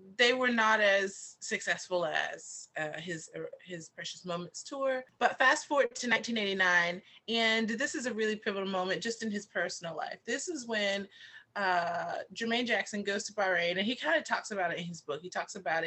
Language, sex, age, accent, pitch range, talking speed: English, female, 30-49, American, 170-220 Hz, 195 wpm